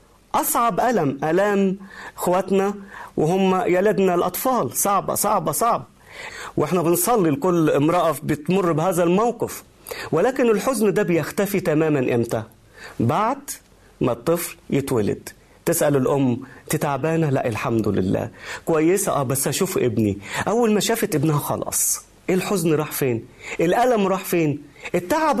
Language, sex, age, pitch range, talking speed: Arabic, male, 40-59, 160-250 Hz, 120 wpm